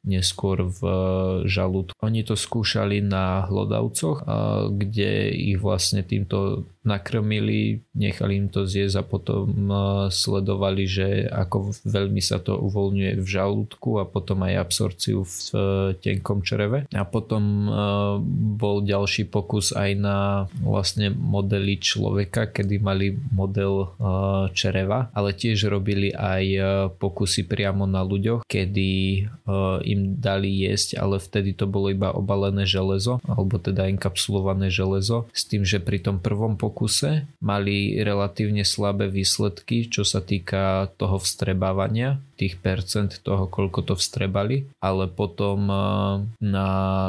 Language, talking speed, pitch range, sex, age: Slovak, 125 wpm, 95-105 Hz, male, 20-39